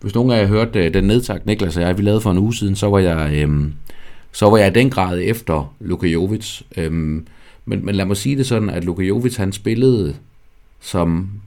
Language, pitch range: English, 85-110 Hz